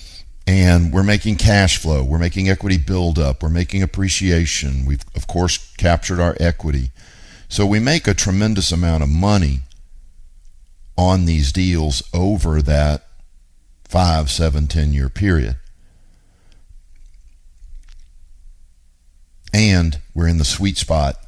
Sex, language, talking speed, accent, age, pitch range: male, English, 120 wpm, American, 60-79, 70-90 Hz